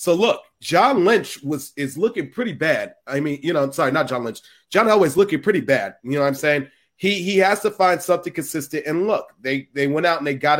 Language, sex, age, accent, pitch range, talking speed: English, male, 30-49, American, 135-160 Hz, 245 wpm